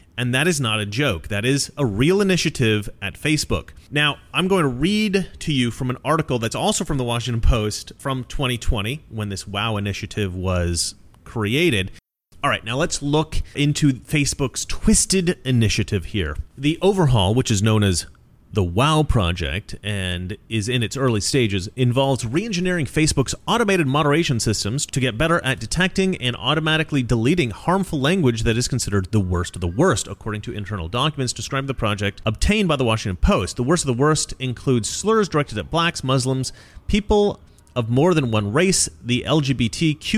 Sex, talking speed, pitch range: male, 175 wpm, 105-155 Hz